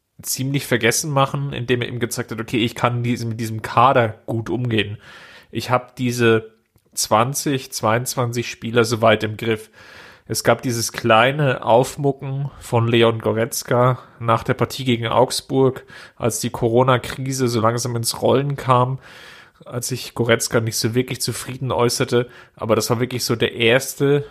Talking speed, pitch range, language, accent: 155 wpm, 115-130 Hz, German, German